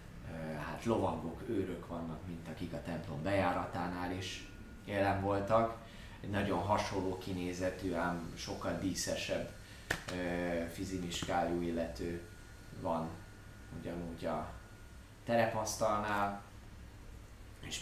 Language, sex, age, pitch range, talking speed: Hungarian, male, 30-49, 85-105 Hz, 90 wpm